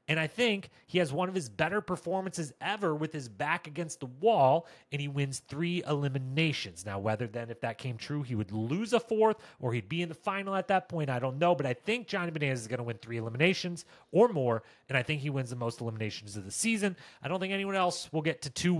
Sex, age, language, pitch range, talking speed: male, 30-49, English, 130-170 Hz, 250 wpm